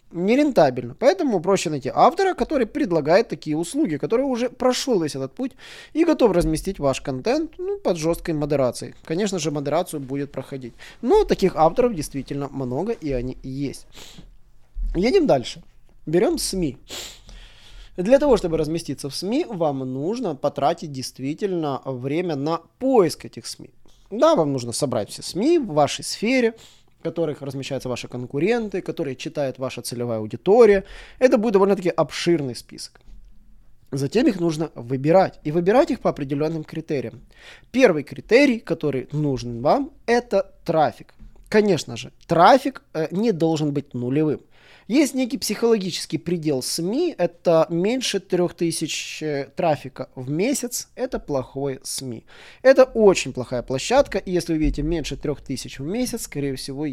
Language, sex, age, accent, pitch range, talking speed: Russian, male, 20-39, native, 135-195 Hz, 140 wpm